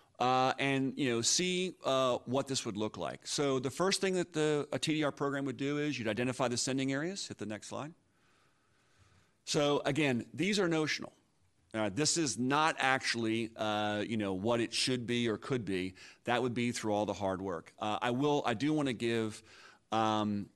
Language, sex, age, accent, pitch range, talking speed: English, male, 40-59, American, 105-130 Hz, 200 wpm